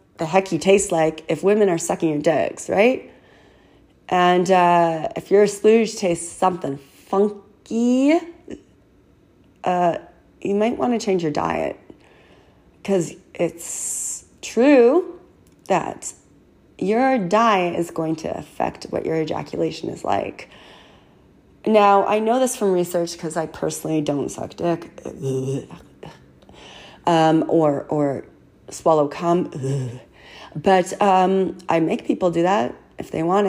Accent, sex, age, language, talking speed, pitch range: American, female, 30-49, English, 125 wpm, 160-195 Hz